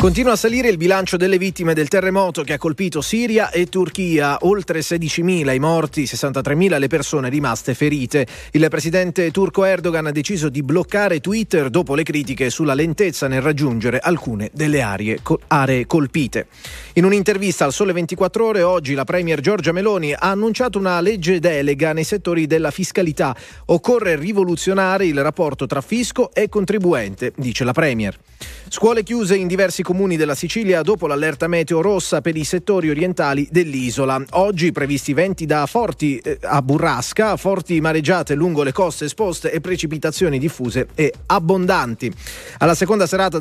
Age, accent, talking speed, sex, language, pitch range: 30-49, native, 155 wpm, male, Italian, 140-185 Hz